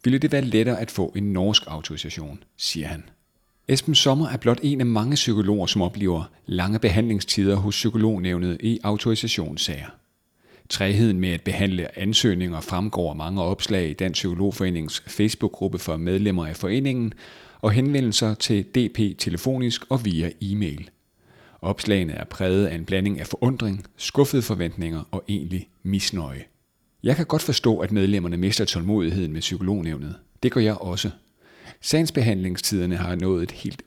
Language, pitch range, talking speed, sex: Danish, 90-110 Hz, 150 wpm, male